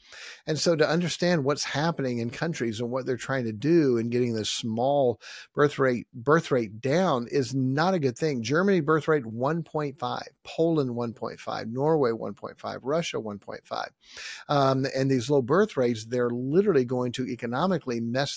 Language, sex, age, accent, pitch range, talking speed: English, male, 40-59, American, 125-165 Hz, 155 wpm